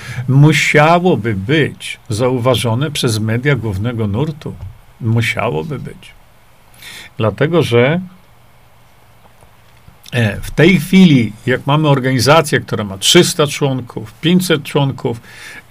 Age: 50-69